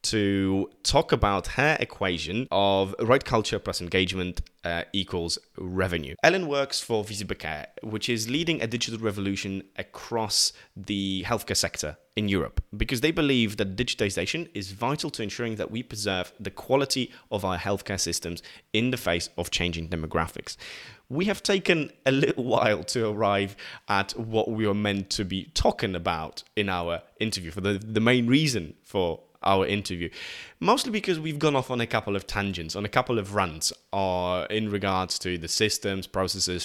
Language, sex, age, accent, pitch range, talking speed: English, male, 20-39, British, 90-115 Hz, 170 wpm